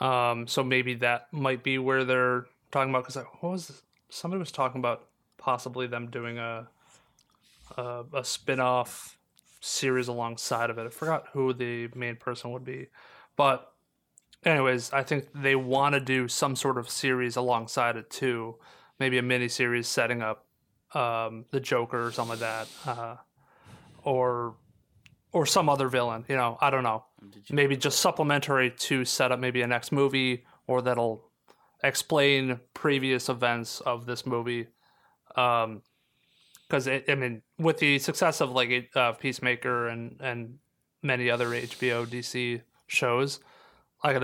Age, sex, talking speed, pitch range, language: 30-49, male, 155 wpm, 120-135 Hz, English